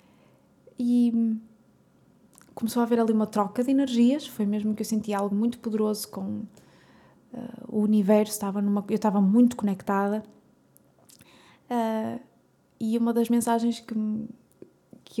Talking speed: 115 wpm